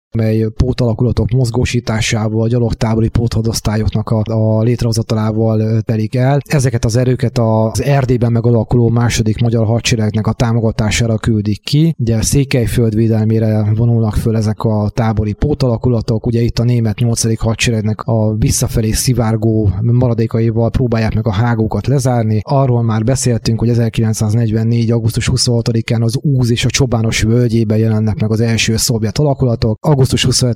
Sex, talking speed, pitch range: male, 130 wpm, 110-120 Hz